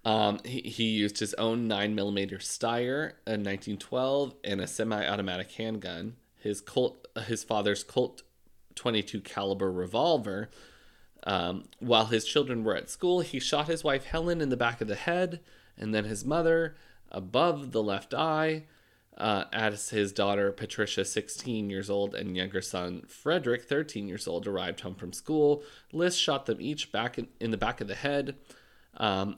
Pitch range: 100-130 Hz